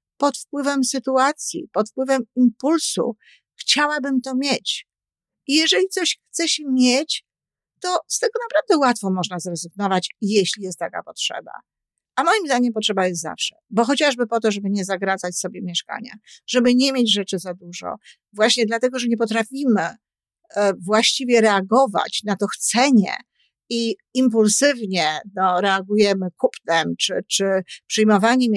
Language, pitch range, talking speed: Polish, 195-260 Hz, 135 wpm